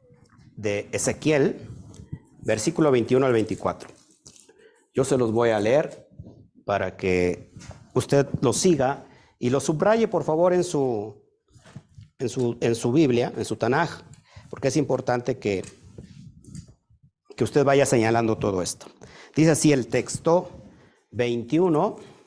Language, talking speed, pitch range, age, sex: Spanish, 120 wpm, 115-155 Hz, 50-69, male